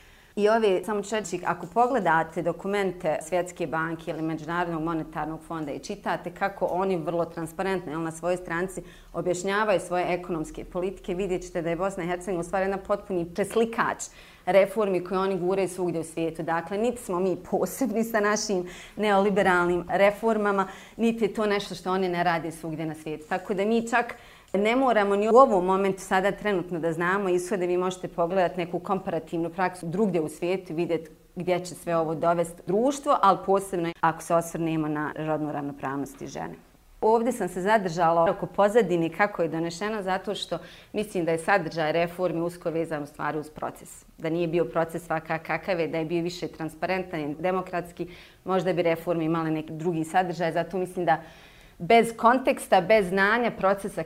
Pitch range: 165-195 Hz